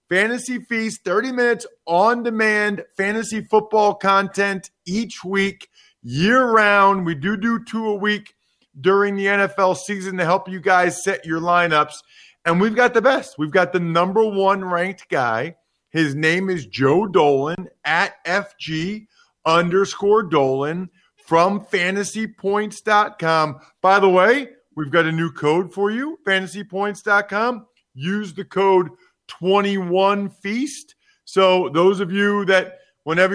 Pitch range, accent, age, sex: 170-205 Hz, American, 40-59, male